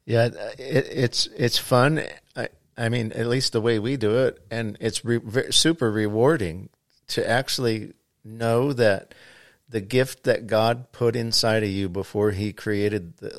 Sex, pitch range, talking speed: male, 100-120 Hz, 165 wpm